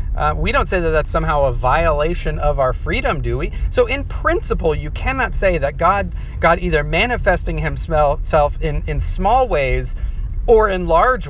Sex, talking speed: male, 175 wpm